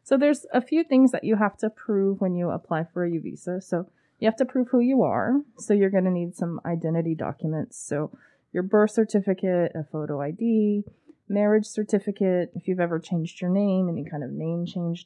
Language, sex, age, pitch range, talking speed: English, female, 20-39, 170-210 Hz, 210 wpm